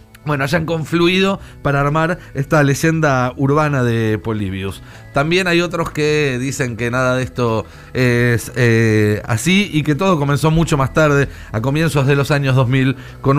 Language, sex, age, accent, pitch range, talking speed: Spanish, male, 30-49, Argentinian, 115-155 Hz, 160 wpm